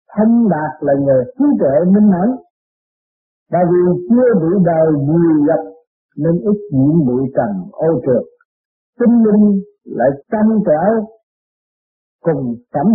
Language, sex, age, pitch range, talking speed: Vietnamese, male, 50-69, 160-225 Hz, 135 wpm